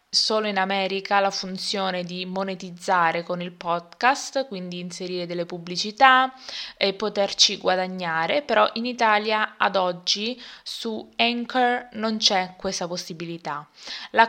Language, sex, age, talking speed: Italian, female, 20-39, 120 wpm